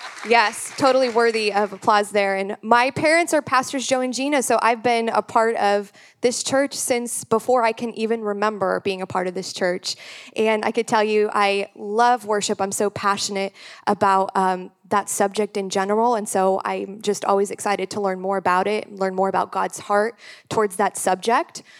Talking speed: 195 wpm